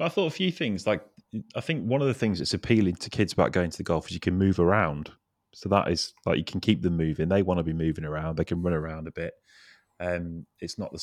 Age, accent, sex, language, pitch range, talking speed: 30-49, British, male, English, 80-95 Hz, 275 wpm